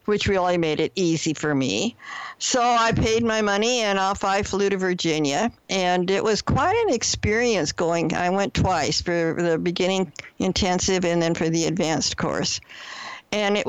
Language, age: English, 60-79